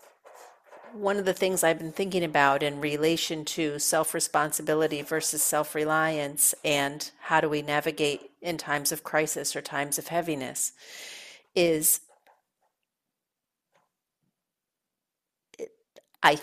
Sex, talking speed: female, 105 wpm